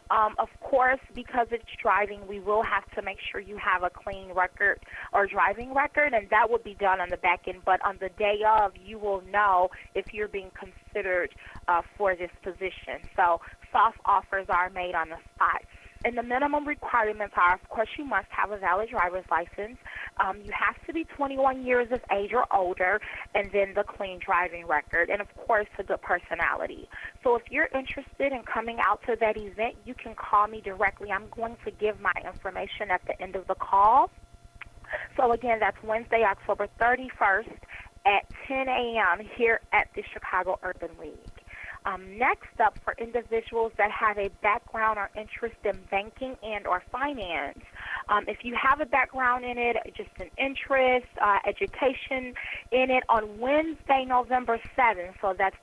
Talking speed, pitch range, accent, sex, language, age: 180 wpm, 195-250 Hz, American, female, English, 20-39